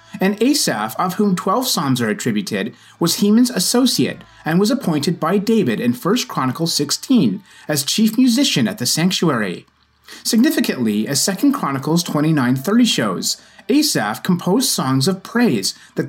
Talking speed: 140 wpm